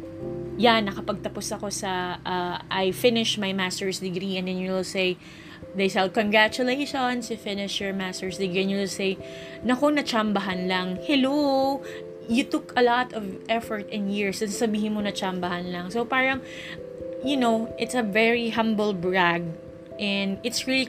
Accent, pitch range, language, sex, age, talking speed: Filipino, 185-225 Hz, English, female, 20-39, 165 wpm